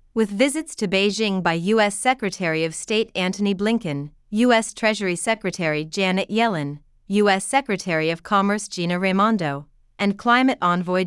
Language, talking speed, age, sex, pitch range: Vietnamese, 135 wpm, 30-49, female, 175-225 Hz